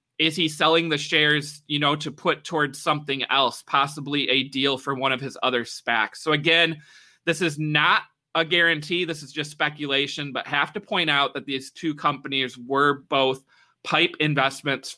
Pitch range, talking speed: 135-165 Hz, 180 wpm